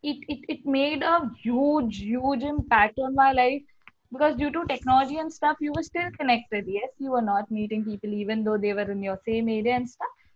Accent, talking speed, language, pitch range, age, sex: Indian, 215 wpm, English, 240-310 Hz, 20-39, female